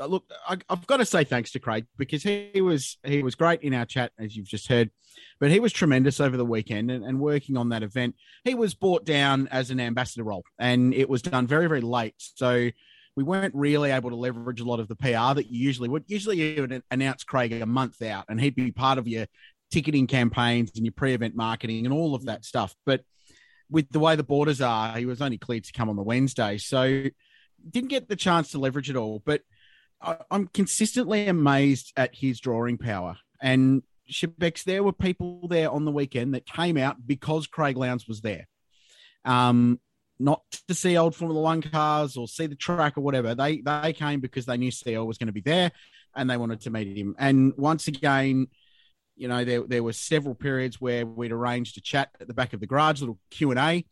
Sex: male